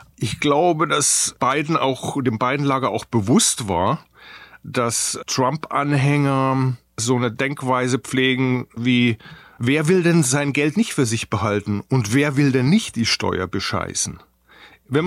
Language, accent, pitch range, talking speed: German, German, 115-150 Hz, 145 wpm